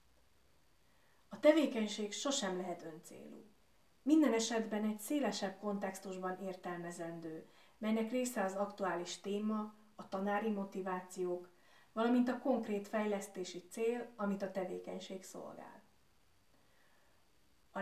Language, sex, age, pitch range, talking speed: Hungarian, female, 30-49, 185-225 Hz, 100 wpm